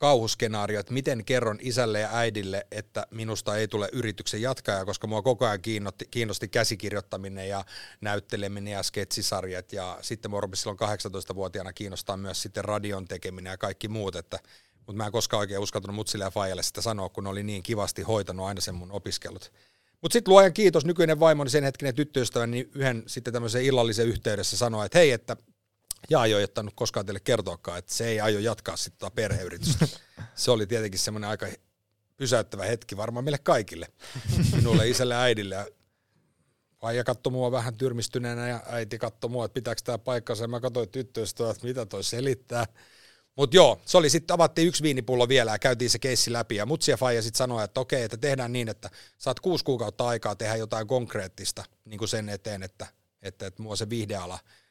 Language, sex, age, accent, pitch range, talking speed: Finnish, male, 30-49, native, 105-125 Hz, 180 wpm